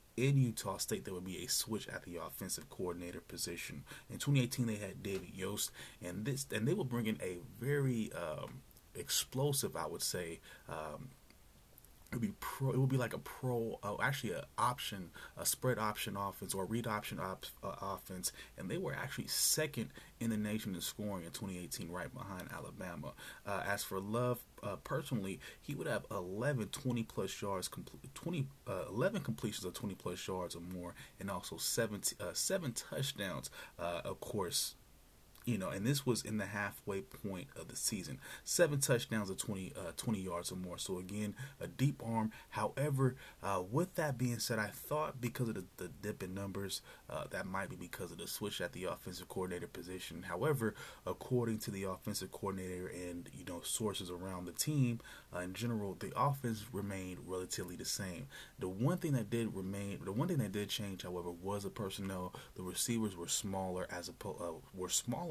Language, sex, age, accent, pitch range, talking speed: English, male, 30-49, American, 95-125 Hz, 190 wpm